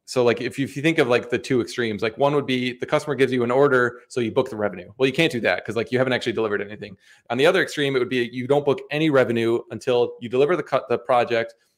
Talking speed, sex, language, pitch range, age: 290 wpm, male, English, 110-130 Hz, 20-39